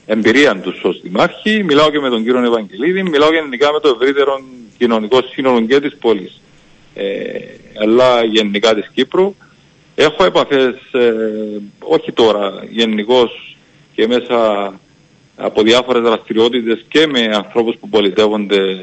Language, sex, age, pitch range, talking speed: Greek, male, 40-59, 110-155 Hz, 130 wpm